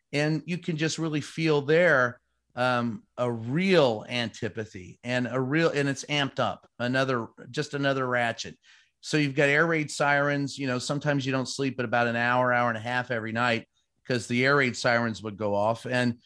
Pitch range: 120-150 Hz